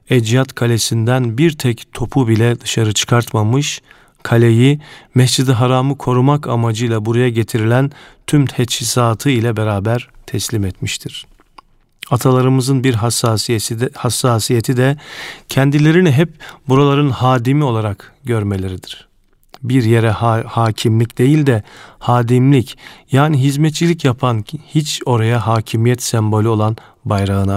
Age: 40-59